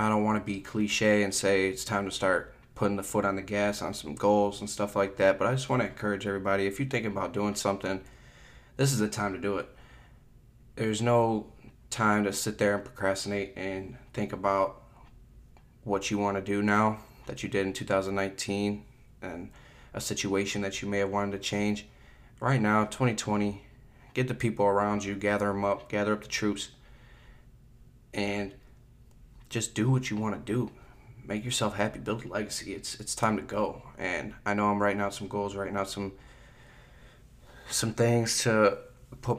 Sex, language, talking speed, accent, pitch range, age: male, English, 190 wpm, American, 100-115 Hz, 20-39